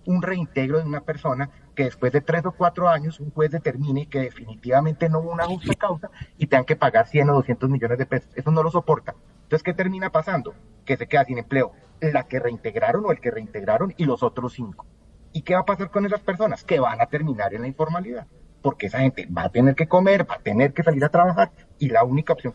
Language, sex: Spanish, male